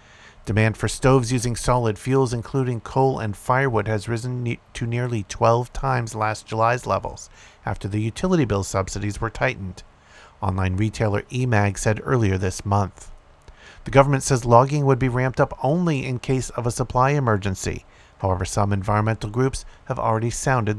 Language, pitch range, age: English, 95-125 Hz, 50-69